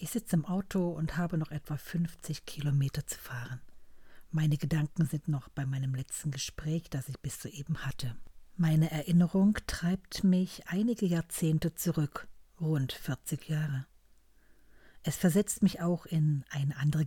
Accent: German